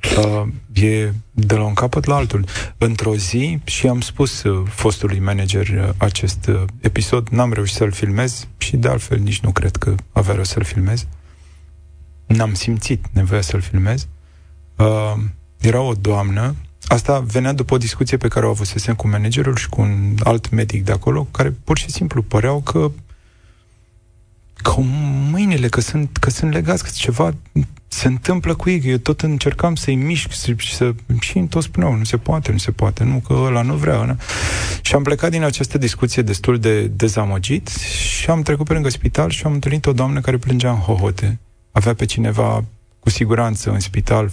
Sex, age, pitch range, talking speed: male, 30-49, 100-130 Hz, 175 wpm